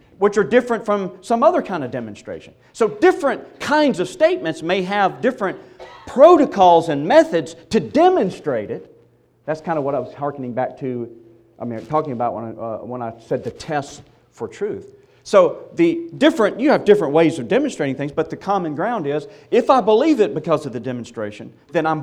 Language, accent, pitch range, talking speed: English, American, 120-170 Hz, 195 wpm